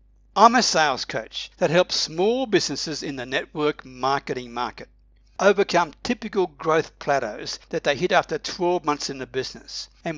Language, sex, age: English, male, 60-79